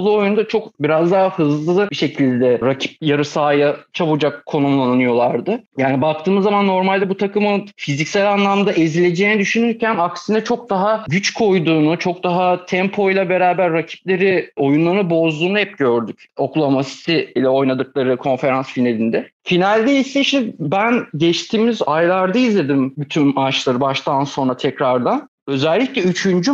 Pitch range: 145-200 Hz